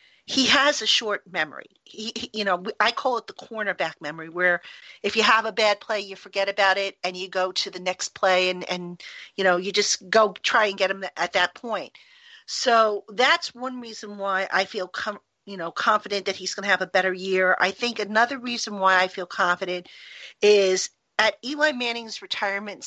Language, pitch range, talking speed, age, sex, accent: English, 185-225 Hz, 205 wpm, 50-69, female, American